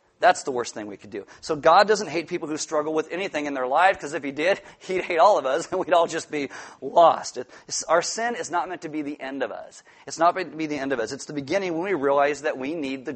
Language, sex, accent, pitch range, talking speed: English, male, American, 140-170 Hz, 290 wpm